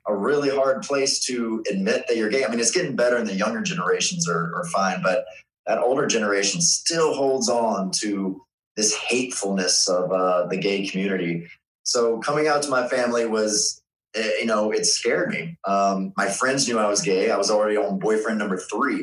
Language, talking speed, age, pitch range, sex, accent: English, 195 wpm, 20-39, 95-125 Hz, male, American